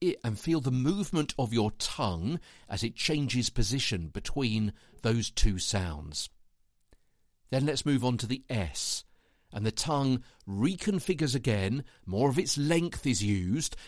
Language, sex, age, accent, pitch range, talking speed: English, male, 50-69, British, 100-150 Hz, 145 wpm